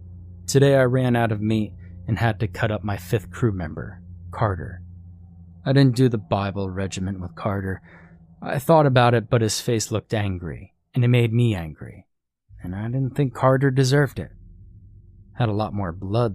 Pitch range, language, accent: 90-115 Hz, English, American